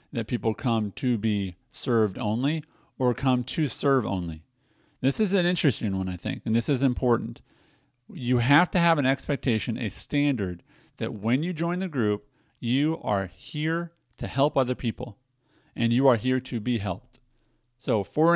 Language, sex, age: English, male, 40-59